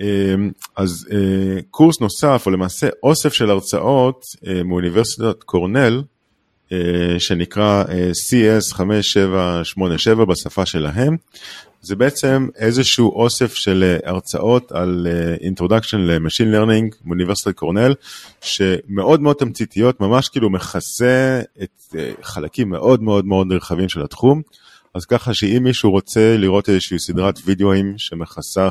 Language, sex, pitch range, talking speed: Hebrew, male, 90-115 Hz, 105 wpm